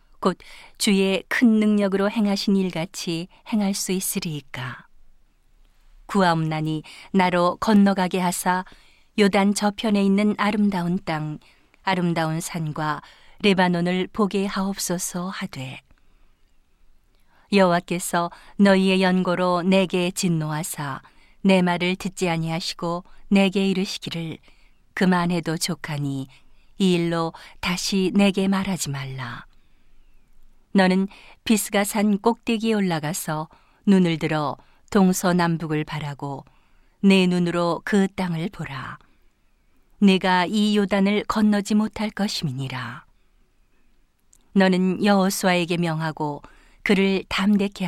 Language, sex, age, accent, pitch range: Korean, female, 40-59, native, 160-200 Hz